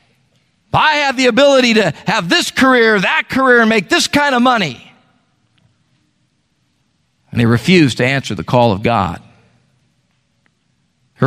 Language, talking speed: English, 140 wpm